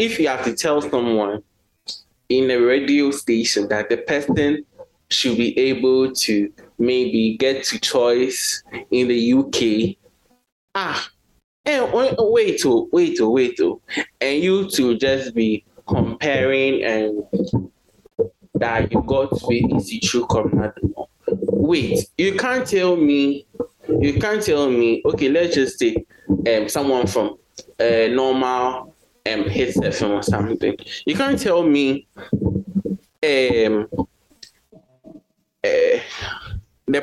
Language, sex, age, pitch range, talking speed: English, male, 20-39, 125-210 Hz, 135 wpm